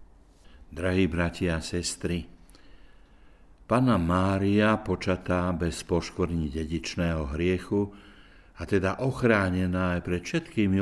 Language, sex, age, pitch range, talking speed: Slovak, male, 60-79, 85-105 Hz, 95 wpm